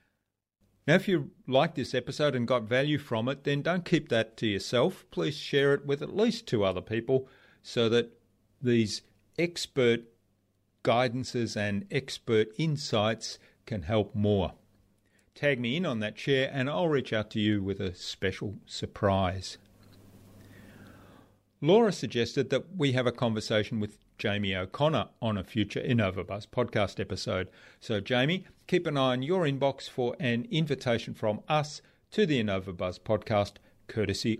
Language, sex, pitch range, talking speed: English, male, 100-130 Hz, 150 wpm